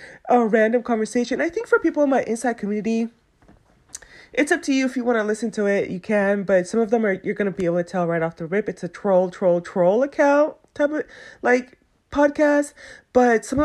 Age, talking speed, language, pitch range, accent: 30-49, 225 wpm, English, 190-245 Hz, American